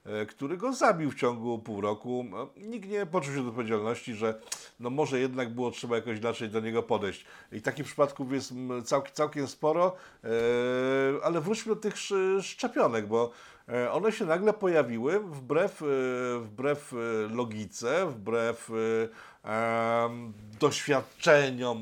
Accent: native